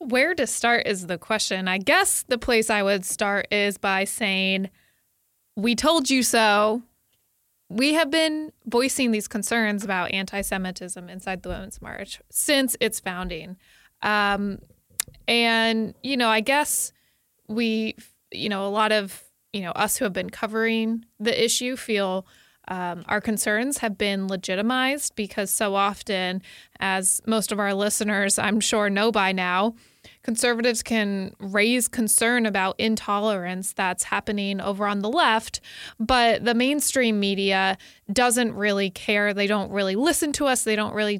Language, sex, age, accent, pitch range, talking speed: English, female, 20-39, American, 195-235 Hz, 150 wpm